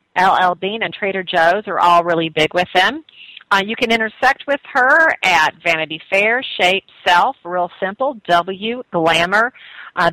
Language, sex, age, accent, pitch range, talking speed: English, female, 40-59, American, 170-235 Hz, 160 wpm